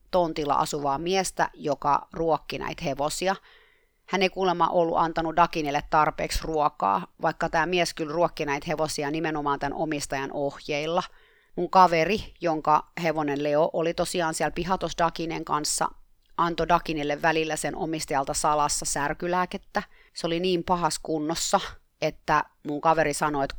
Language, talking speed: Finnish, 135 wpm